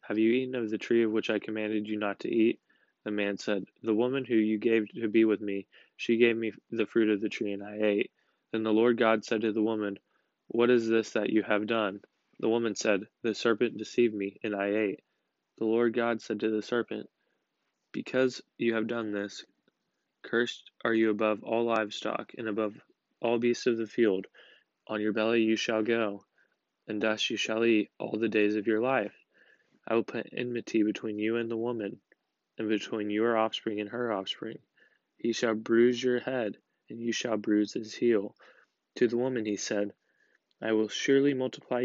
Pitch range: 110-120 Hz